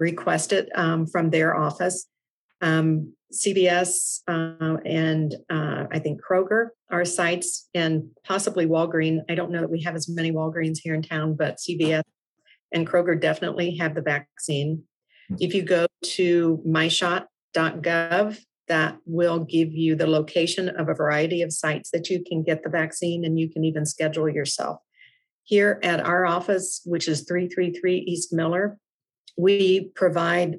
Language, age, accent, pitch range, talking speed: English, 50-69, American, 160-180 Hz, 155 wpm